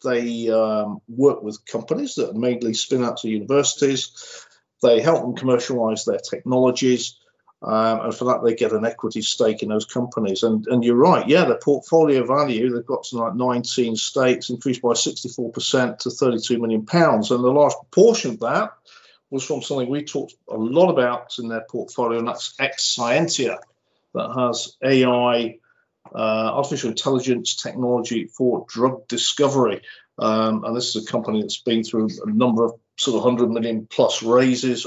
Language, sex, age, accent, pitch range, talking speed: English, male, 50-69, British, 115-130 Hz, 170 wpm